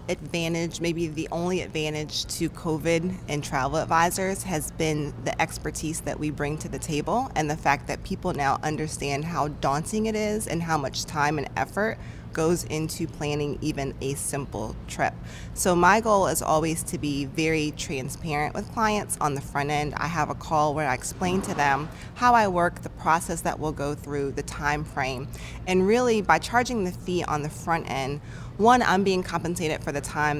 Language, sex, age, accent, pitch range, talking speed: English, female, 20-39, American, 145-175 Hz, 190 wpm